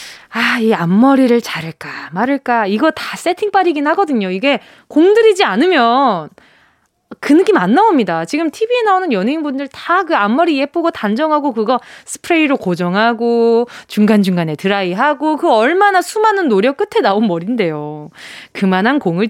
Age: 20-39